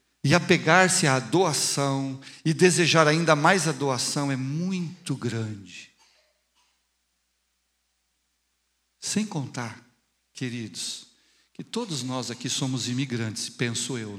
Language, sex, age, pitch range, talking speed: English, male, 60-79, 120-165 Hz, 100 wpm